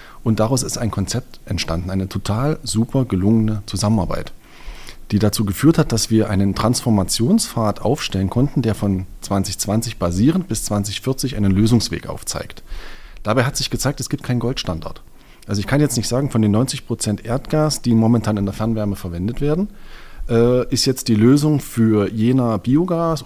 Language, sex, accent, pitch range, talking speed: German, male, German, 105-135 Hz, 165 wpm